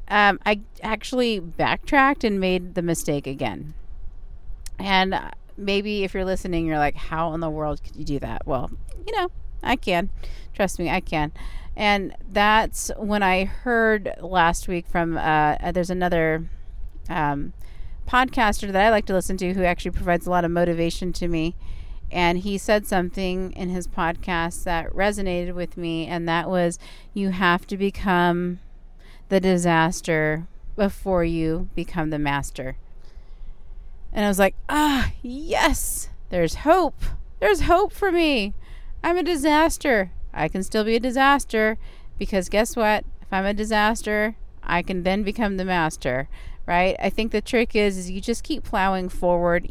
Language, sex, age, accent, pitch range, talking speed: English, female, 40-59, American, 170-220 Hz, 160 wpm